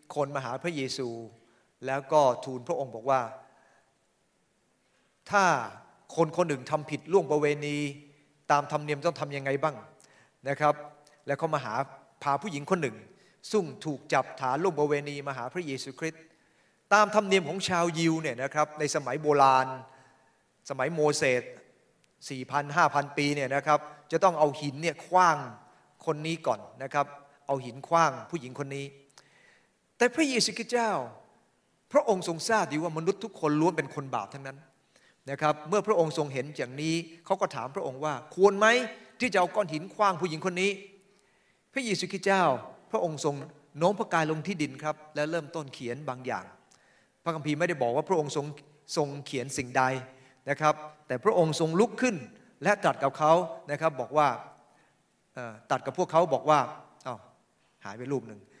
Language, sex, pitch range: English, male, 140-175 Hz